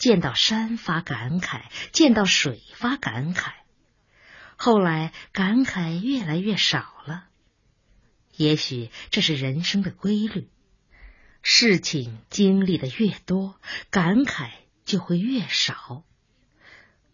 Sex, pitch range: female, 145-215 Hz